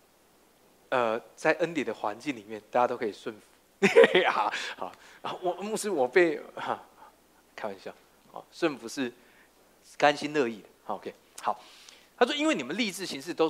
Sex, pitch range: male, 155-255 Hz